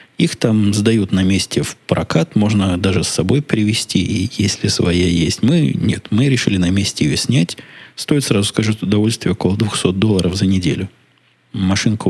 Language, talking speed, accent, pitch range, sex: Russian, 170 wpm, native, 95-110 Hz, male